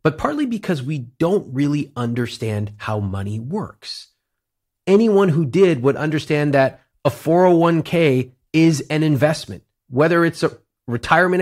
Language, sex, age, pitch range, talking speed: English, male, 30-49, 120-185 Hz, 130 wpm